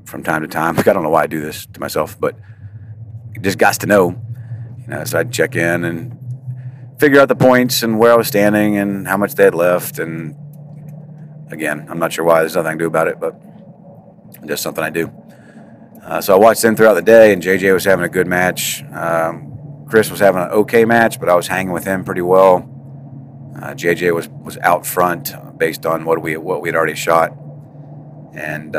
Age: 40-59